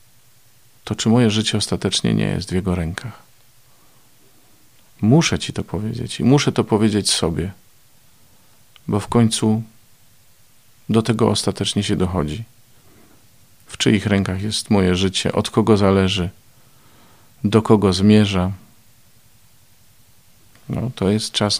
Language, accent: Polish, native